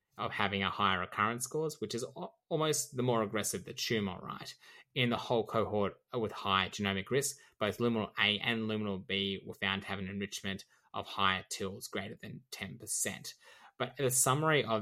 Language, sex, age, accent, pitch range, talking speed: English, male, 10-29, Australian, 100-110 Hz, 180 wpm